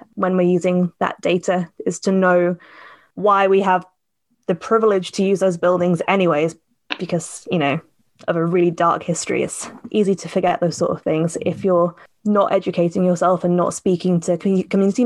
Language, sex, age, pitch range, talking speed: English, female, 20-39, 175-200 Hz, 175 wpm